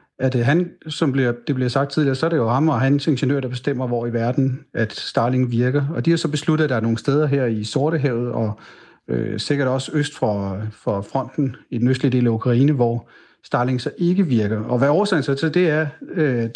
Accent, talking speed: native, 230 wpm